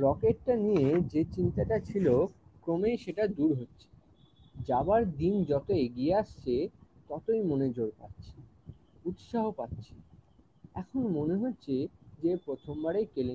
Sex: male